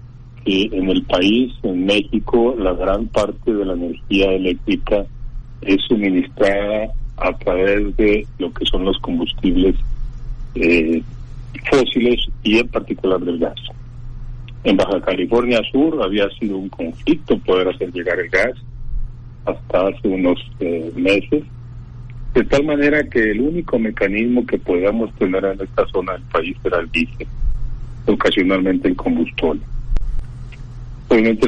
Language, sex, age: Spanish, male, 40-59